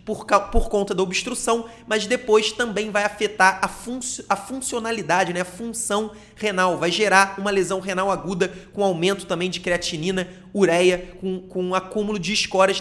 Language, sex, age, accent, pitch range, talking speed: Portuguese, male, 30-49, Brazilian, 180-210 Hz, 175 wpm